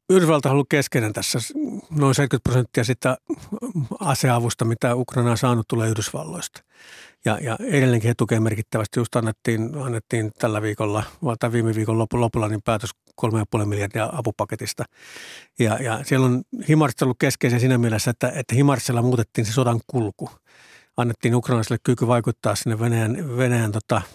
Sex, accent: male, native